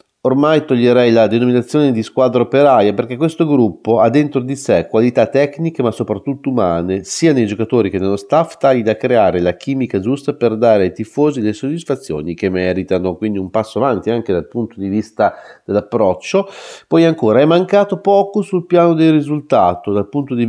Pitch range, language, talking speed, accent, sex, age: 100-140 Hz, Italian, 180 wpm, native, male, 40-59